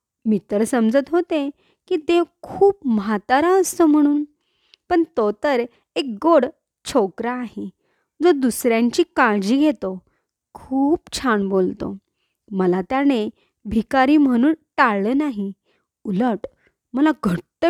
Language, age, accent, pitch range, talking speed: Marathi, 20-39, native, 220-325 Hz, 110 wpm